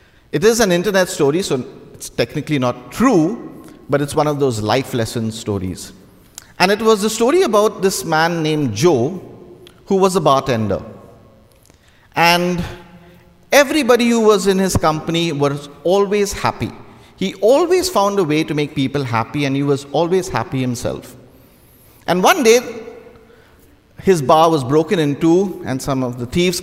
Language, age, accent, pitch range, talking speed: English, 50-69, Indian, 115-170 Hz, 160 wpm